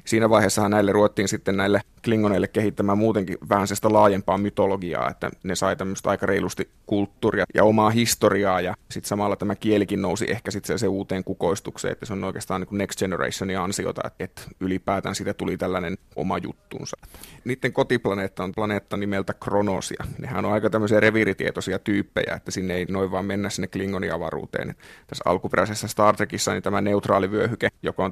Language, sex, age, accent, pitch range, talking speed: Finnish, male, 30-49, native, 95-105 Hz, 165 wpm